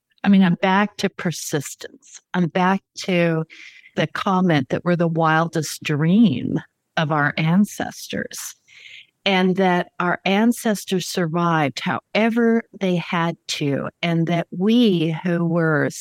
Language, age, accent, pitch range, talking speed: English, 50-69, American, 165-215 Hz, 125 wpm